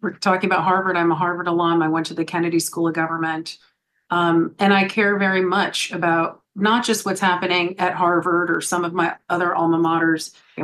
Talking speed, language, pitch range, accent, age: 210 wpm, English, 175-205 Hz, American, 40-59